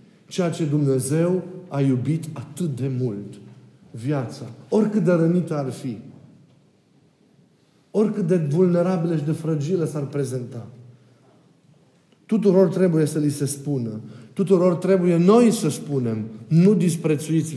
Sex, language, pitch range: male, Romanian, 145-190 Hz